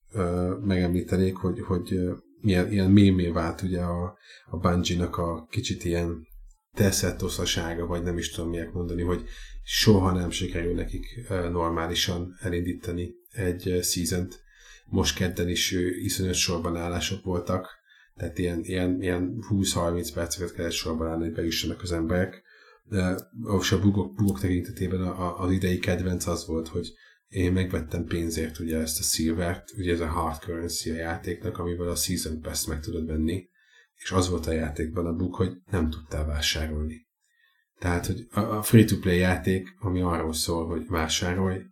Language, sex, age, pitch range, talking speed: Hungarian, male, 30-49, 85-95 Hz, 145 wpm